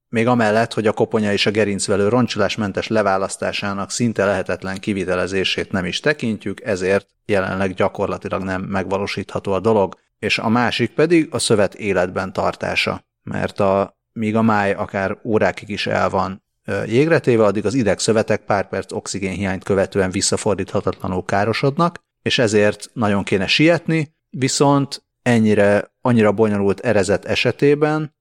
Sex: male